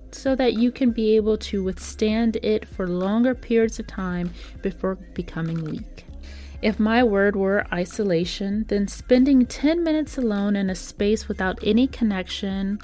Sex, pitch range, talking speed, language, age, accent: female, 175-230 Hz, 155 wpm, English, 30-49, American